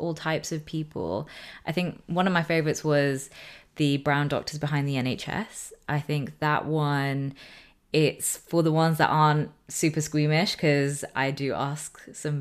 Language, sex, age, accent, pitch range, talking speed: English, female, 20-39, British, 135-155 Hz, 165 wpm